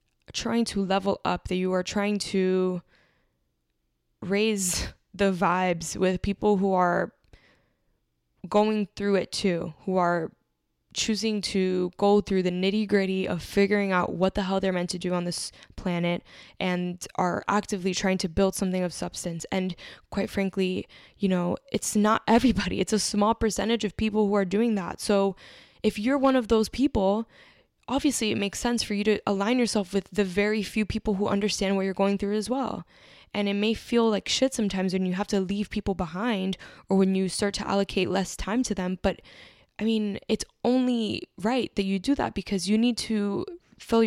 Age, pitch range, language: 10-29, 185-215 Hz, English